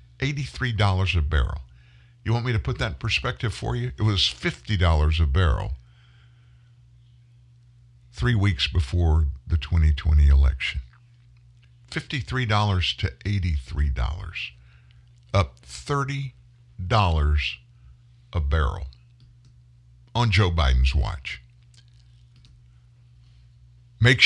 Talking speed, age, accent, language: 85 wpm, 60-79, American, English